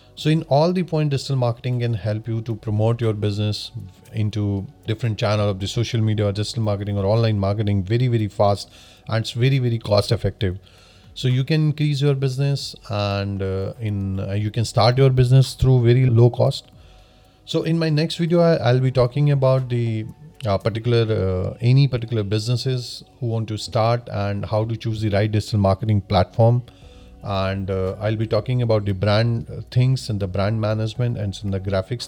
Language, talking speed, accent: Hindi, 190 wpm, native